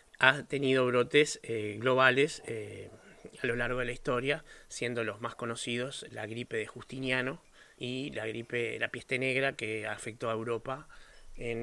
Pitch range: 120-145 Hz